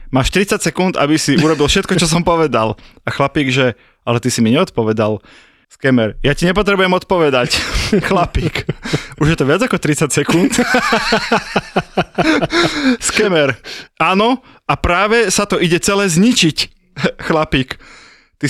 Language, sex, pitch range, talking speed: Slovak, male, 140-185 Hz, 135 wpm